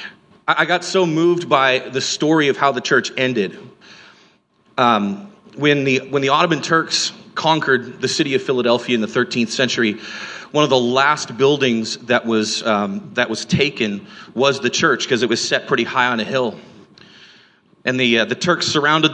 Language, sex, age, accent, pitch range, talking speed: English, male, 40-59, American, 120-160 Hz, 180 wpm